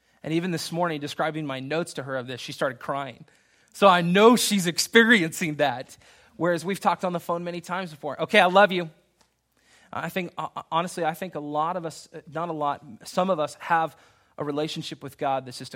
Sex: male